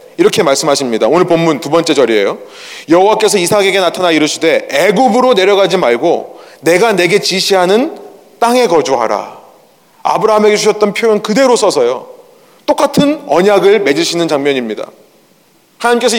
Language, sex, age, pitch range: Korean, male, 30-49, 185-255 Hz